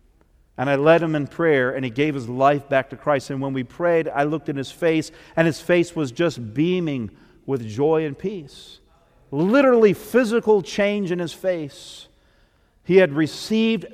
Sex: male